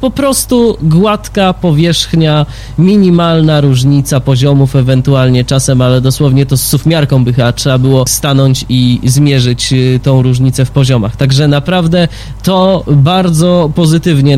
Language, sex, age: Polish, male, 20-39